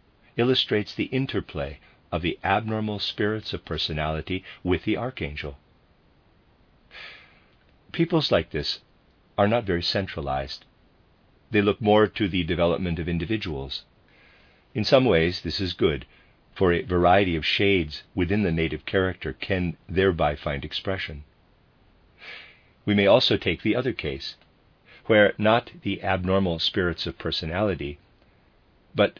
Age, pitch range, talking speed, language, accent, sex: 50-69, 85-110 Hz, 125 wpm, English, American, male